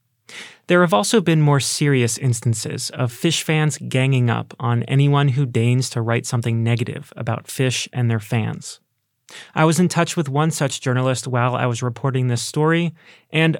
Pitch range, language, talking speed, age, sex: 125-160 Hz, English, 175 wpm, 30-49, male